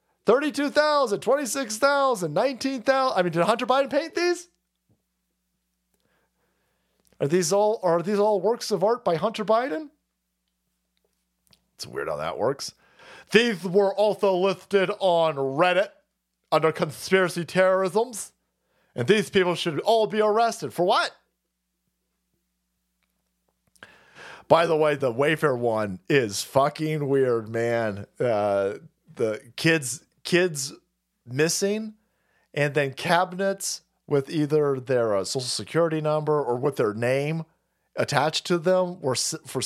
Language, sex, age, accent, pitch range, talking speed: English, male, 40-59, American, 130-200 Hz, 125 wpm